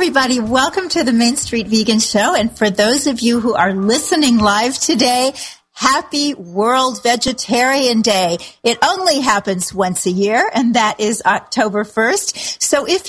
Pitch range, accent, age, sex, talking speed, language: 200-260 Hz, American, 40-59, female, 160 wpm, English